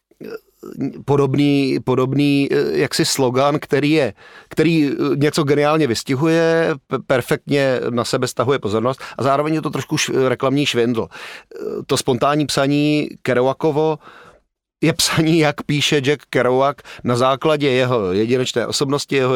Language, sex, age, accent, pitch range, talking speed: Czech, male, 30-49, native, 125-150 Hz, 120 wpm